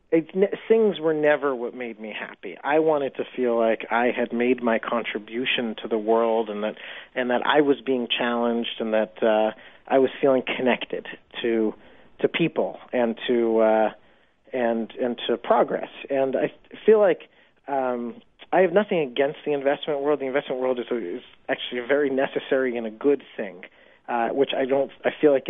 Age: 40-59